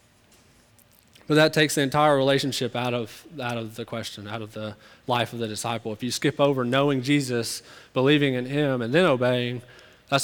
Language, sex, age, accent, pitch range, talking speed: English, male, 20-39, American, 120-140 Hz, 190 wpm